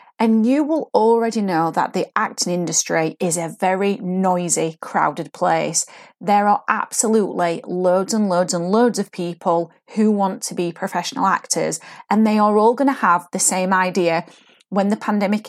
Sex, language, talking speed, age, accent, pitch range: female, English, 170 wpm, 30-49, British, 180-245 Hz